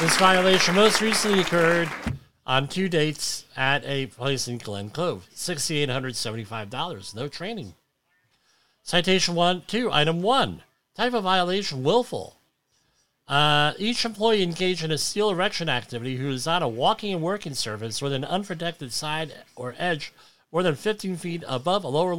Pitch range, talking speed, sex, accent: 120-180 Hz, 150 wpm, male, American